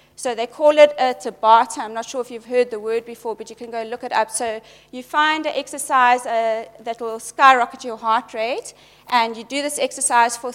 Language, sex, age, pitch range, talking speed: English, female, 30-49, 220-265 Hz, 220 wpm